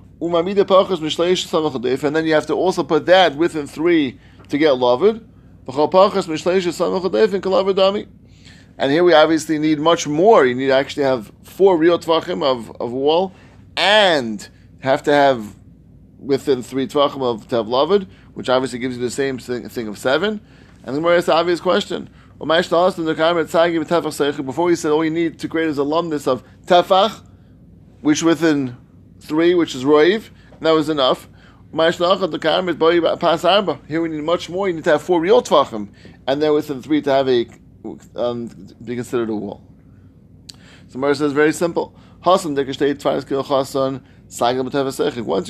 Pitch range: 130-170 Hz